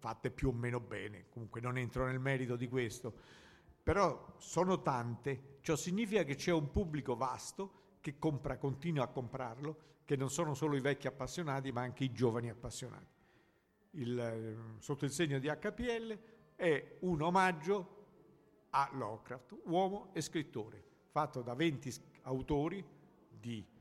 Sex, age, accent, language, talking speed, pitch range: male, 50-69, native, Italian, 145 wpm, 120-155 Hz